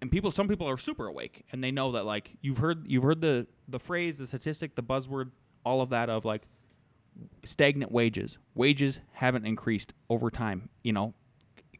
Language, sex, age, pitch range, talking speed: English, male, 20-39, 125-185 Hz, 195 wpm